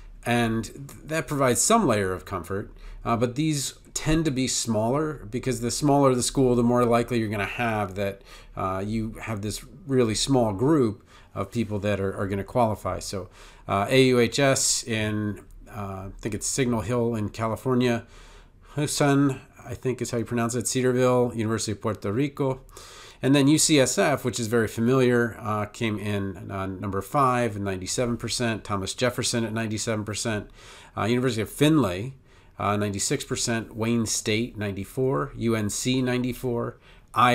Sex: male